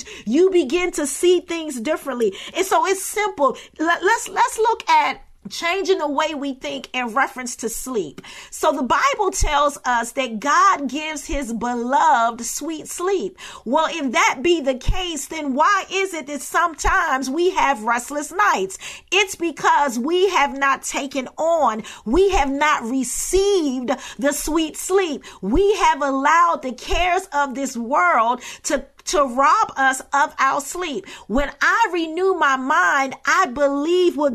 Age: 40-59